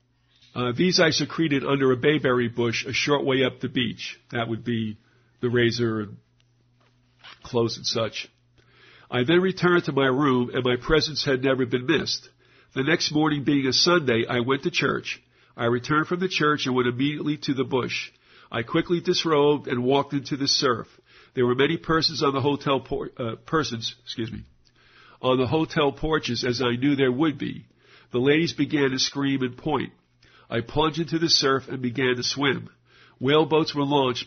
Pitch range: 125-145 Hz